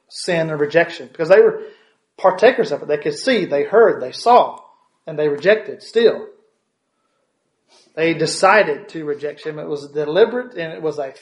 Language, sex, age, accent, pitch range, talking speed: English, male, 40-59, American, 150-230 Hz, 170 wpm